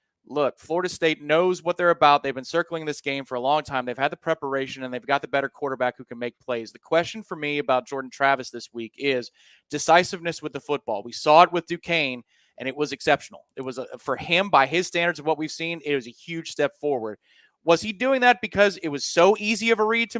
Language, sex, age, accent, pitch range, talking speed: English, male, 30-49, American, 135-170 Hz, 245 wpm